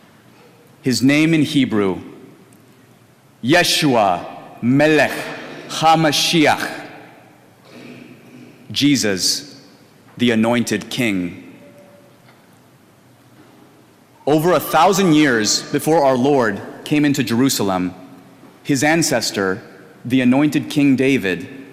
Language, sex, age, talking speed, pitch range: English, male, 30-49, 75 wpm, 110-155 Hz